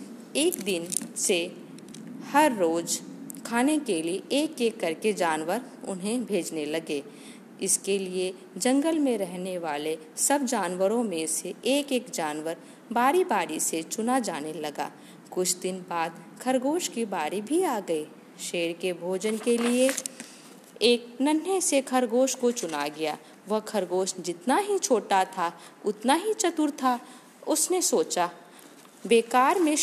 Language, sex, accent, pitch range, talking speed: Hindi, female, native, 185-260 Hz, 140 wpm